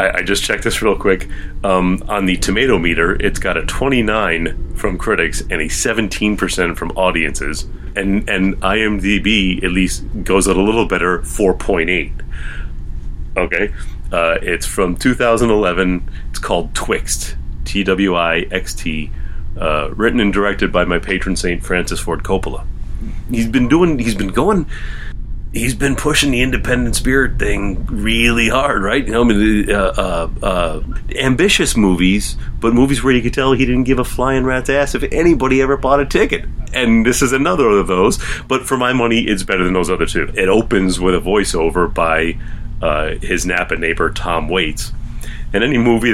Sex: male